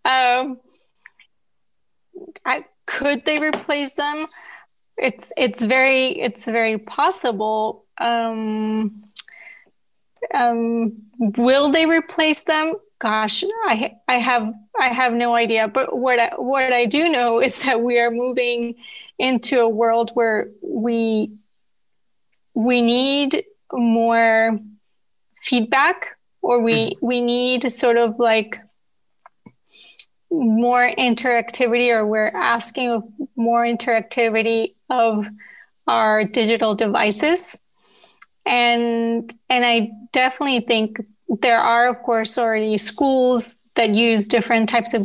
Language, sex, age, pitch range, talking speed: English, female, 30-49, 225-255 Hz, 110 wpm